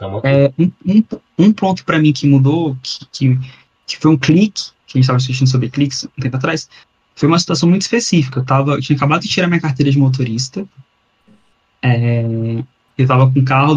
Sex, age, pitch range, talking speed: male, 20-39, 130-180 Hz, 200 wpm